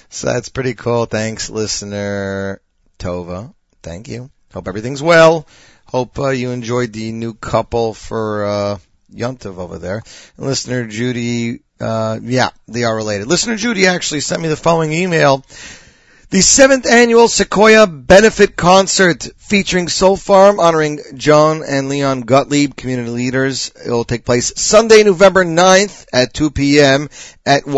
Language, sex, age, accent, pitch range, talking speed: English, male, 40-59, American, 120-160 Hz, 145 wpm